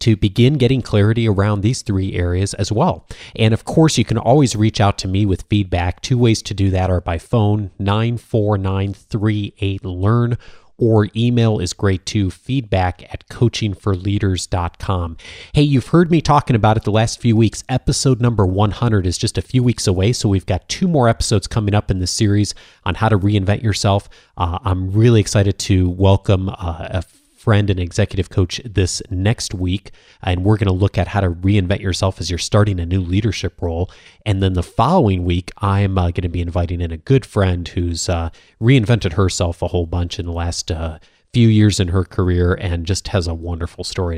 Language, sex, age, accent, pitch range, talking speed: English, male, 30-49, American, 90-115 Hz, 195 wpm